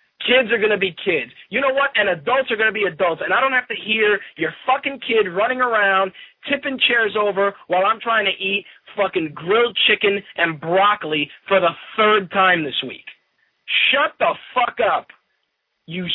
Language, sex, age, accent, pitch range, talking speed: English, male, 30-49, American, 205-280 Hz, 190 wpm